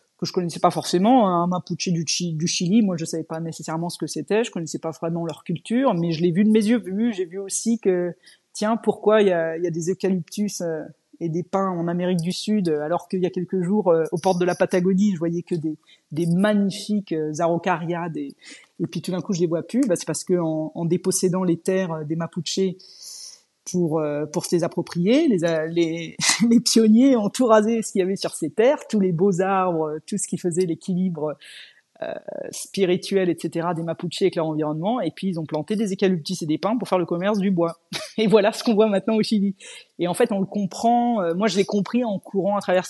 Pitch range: 170-205 Hz